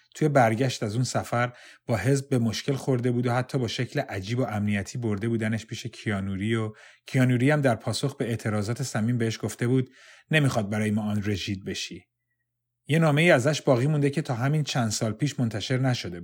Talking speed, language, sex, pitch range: 195 wpm, English, male, 115-135 Hz